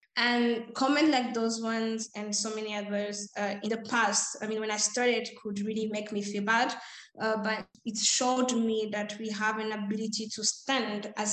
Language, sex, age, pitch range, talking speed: English, female, 20-39, 210-235 Hz, 195 wpm